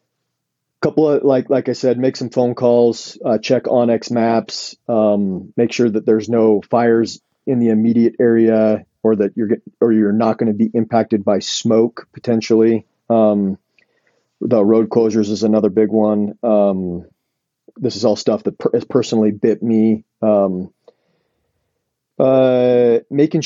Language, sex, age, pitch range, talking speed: English, male, 40-59, 105-115 Hz, 160 wpm